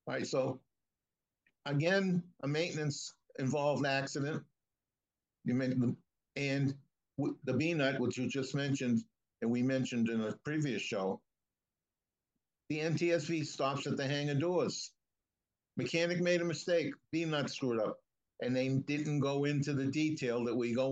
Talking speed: 140 wpm